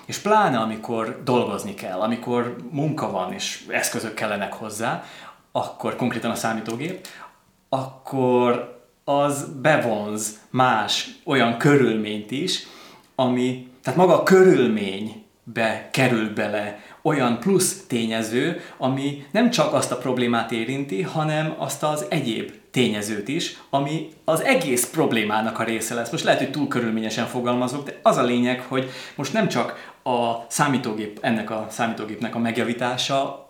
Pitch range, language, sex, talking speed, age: 110-145 Hz, Hungarian, male, 135 wpm, 30-49